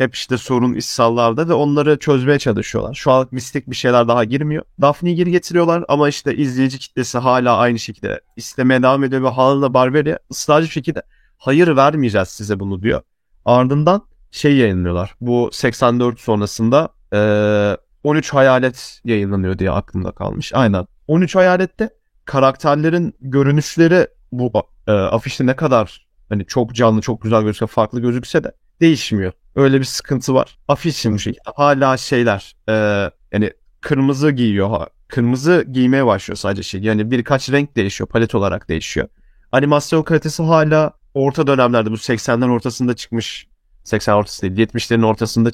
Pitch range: 110-145 Hz